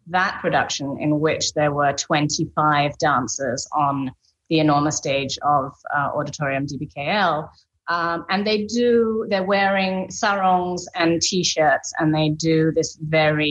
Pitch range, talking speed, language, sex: 145-170 Hz, 135 wpm, English, female